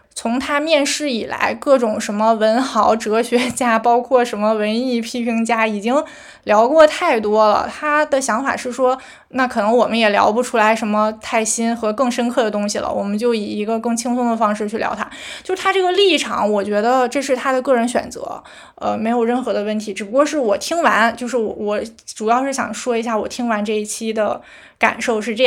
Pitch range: 220-275 Hz